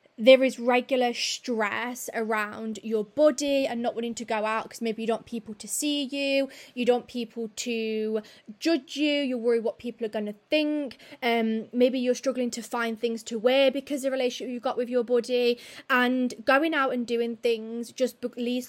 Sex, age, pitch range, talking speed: female, 20-39, 220-255 Hz, 200 wpm